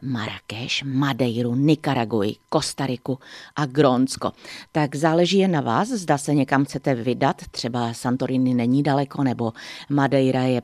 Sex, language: female, Czech